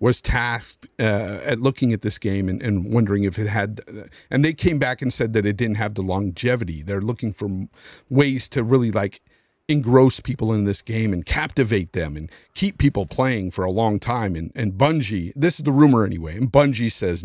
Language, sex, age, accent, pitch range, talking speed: English, male, 50-69, American, 100-140 Hz, 210 wpm